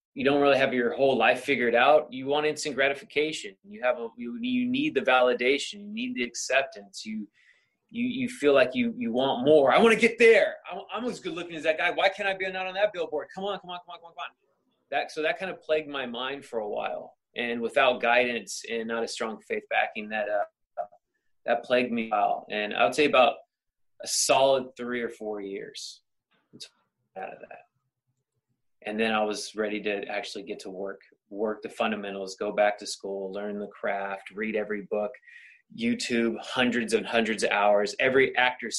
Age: 20-39